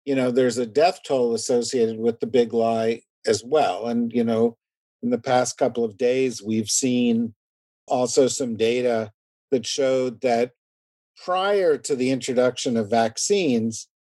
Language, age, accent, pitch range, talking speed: English, 50-69, American, 115-155 Hz, 155 wpm